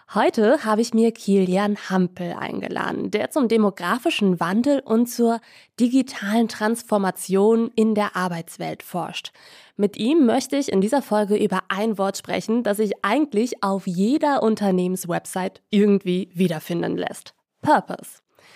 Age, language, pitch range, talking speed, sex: 20-39, German, 185-235 Hz, 130 wpm, female